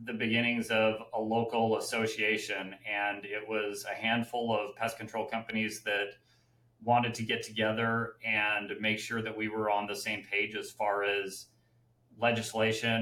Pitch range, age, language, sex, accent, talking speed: 105-120 Hz, 30-49, English, male, American, 155 wpm